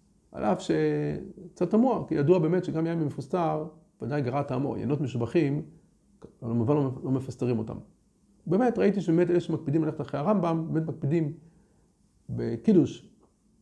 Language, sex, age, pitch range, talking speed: Hebrew, male, 50-69, 125-180 Hz, 130 wpm